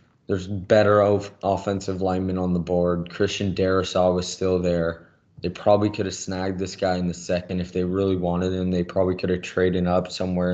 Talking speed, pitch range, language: 195 wpm, 90-100 Hz, English